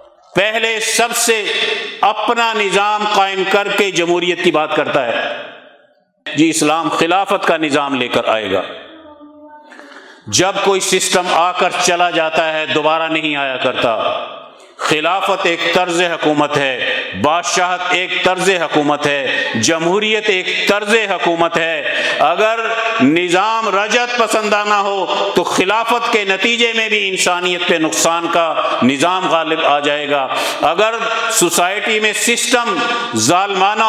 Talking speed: 130 wpm